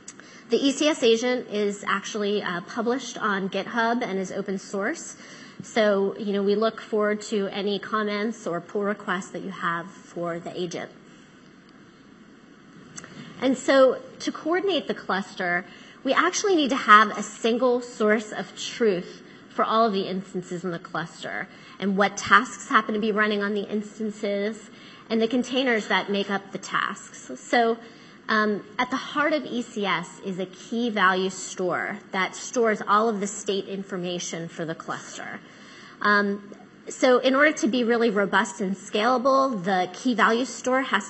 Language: English